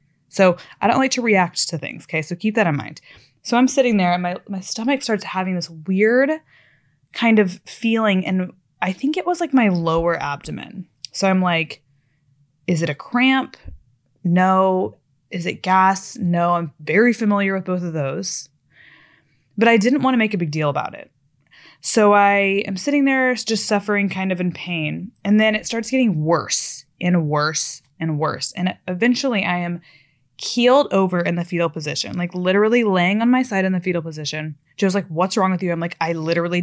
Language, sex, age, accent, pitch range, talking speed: English, female, 20-39, American, 155-205 Hz, 195 wpm